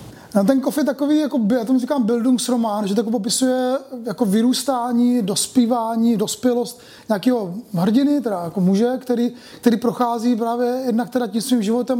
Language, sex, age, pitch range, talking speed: Czech, male, 30-49, 225-260 Hz, 150 wpm